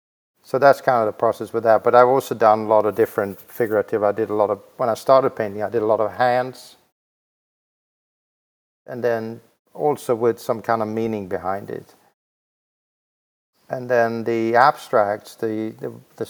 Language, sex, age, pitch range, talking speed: English, male, 50-69, 105-115 Hz, 175 wpm